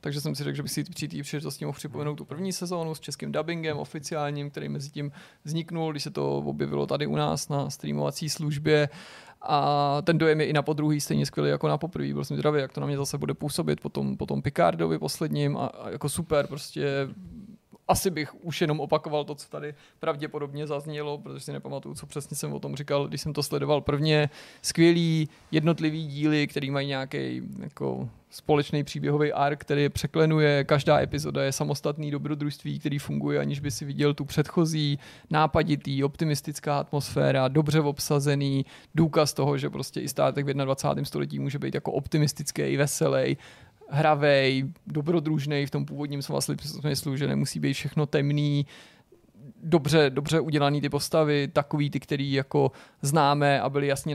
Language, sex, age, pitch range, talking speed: Czech, male, 30-49, 140-150 Hz, 170 wpm